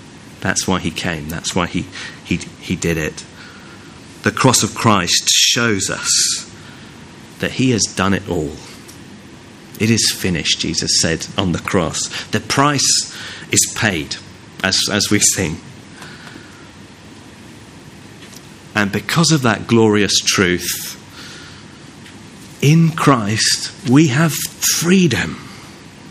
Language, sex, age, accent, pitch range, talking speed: English, male, 40-59, British, 110-155 Hz, 115 wpm